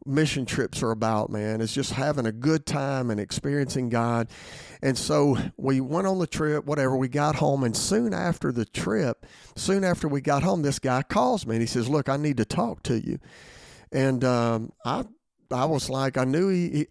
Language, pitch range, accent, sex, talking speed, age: English, 120-150 Hz, American, male, 205 wpm, 50-69